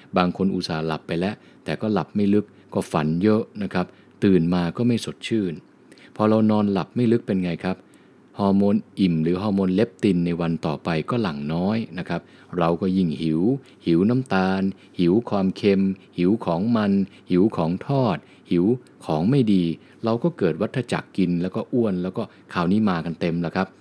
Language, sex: English, male